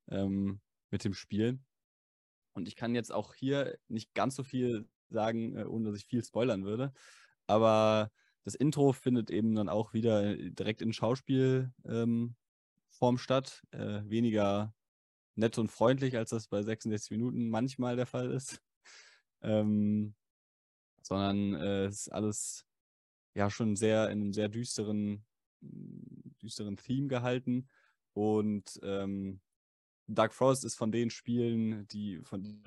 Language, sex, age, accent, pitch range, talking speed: German, male, 20-39, German, 100-120 Hz, 130 wpm